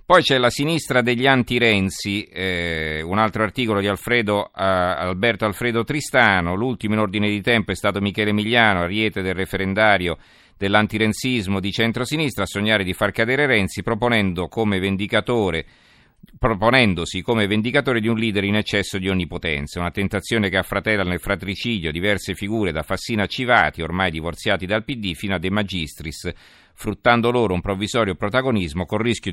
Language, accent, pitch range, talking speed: Italian, native, 95-115 Hz, 155 wpm